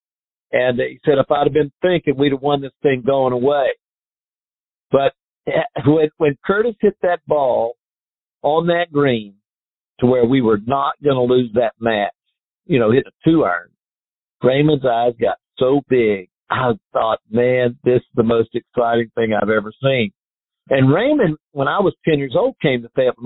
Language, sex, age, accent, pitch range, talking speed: English, male, 50-69, American, 110-150 Hz, 175 wpm